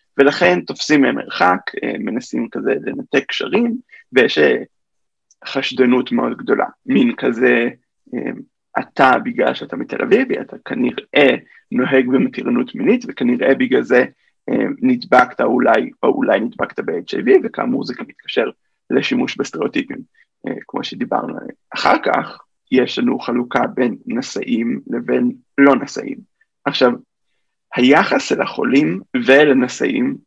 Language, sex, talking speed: Hebrew, male, 110 wpm